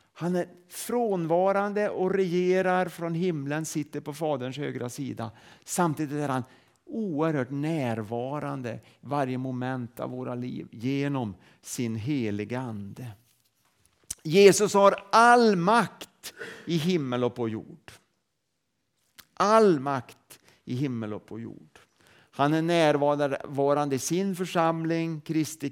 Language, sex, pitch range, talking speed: Swedish, male, 120-170 Hz, 110 wpm